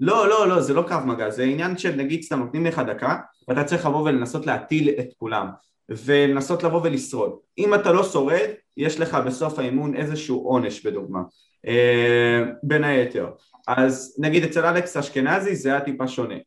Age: 20-39